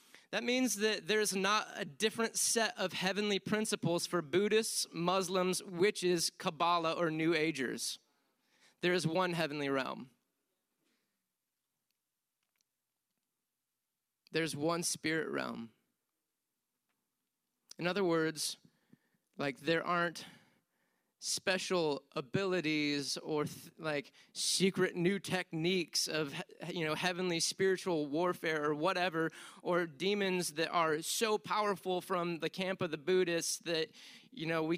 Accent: American